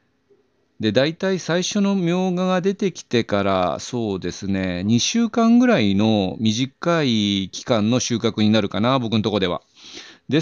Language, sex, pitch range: Japanese, male, 100-145 Hz